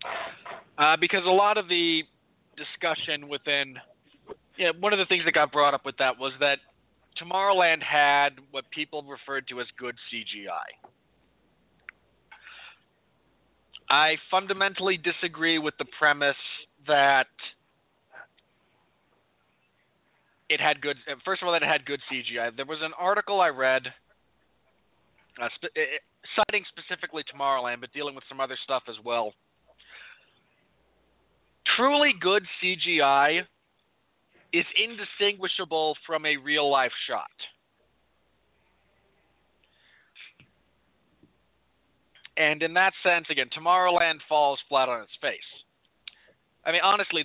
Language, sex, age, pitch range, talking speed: English, male, 20-39, 140-175 Hz, 120 wpm